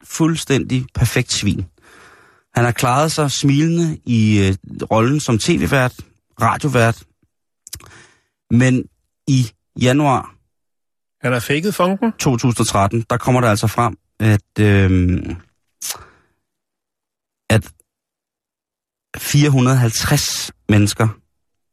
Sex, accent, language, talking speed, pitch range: male, native, Danish, 75 wpm, 100-125 Hz